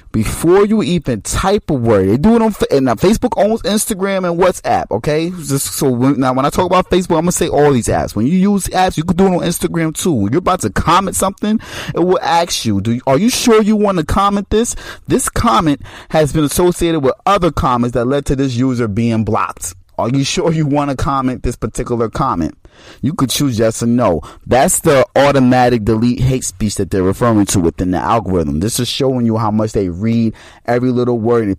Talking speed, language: 230 wpm, English